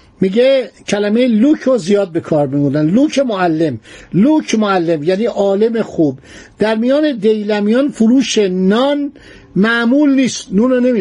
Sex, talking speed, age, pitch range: male, 120 wpm, 60-79, 185-235 Hz